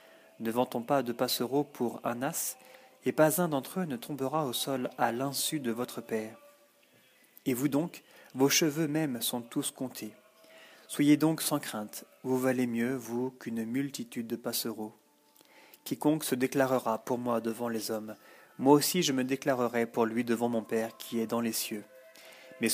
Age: 30-49